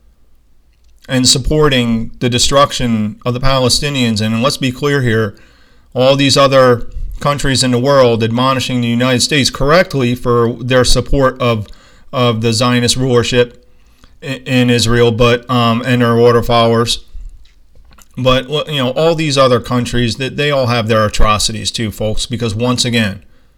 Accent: American